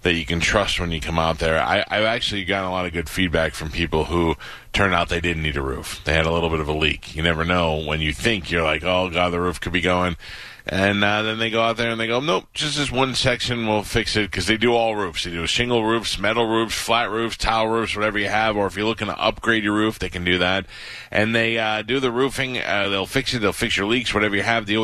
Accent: American